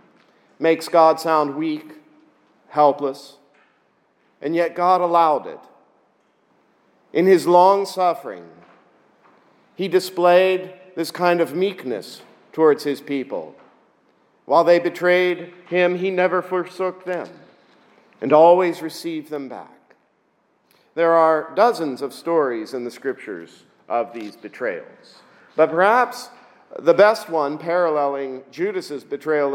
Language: English